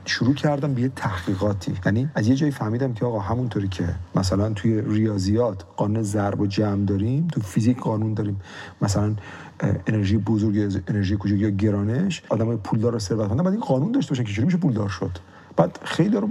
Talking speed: 180 wpm